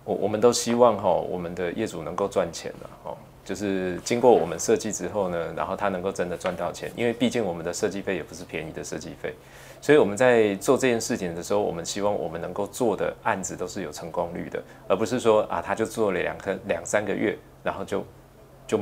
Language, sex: Chinese, male